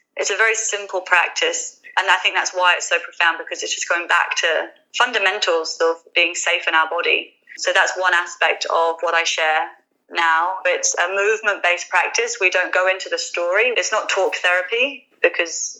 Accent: British